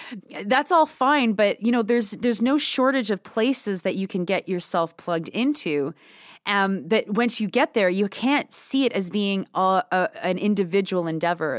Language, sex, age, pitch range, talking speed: English, female, 30-49, 170-220 Hz, 185 wpm